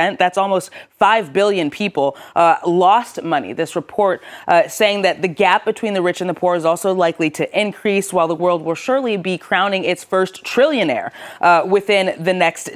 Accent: American